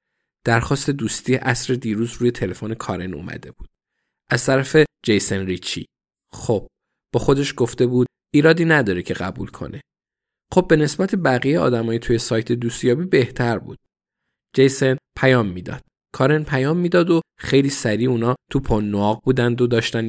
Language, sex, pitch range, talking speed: Persian, male, 100-130 Hz, 145 wpm